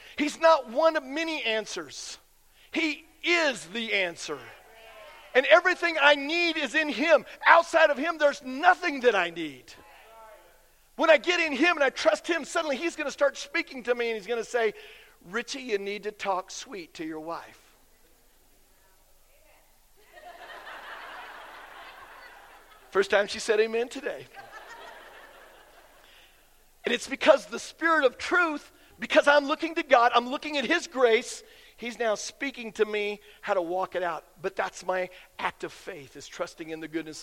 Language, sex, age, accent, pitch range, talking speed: English, male, 50-69, American, 200-295 Hz, 160 wpm